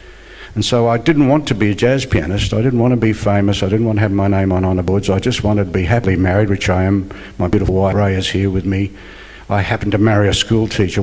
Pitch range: 105-130 Hz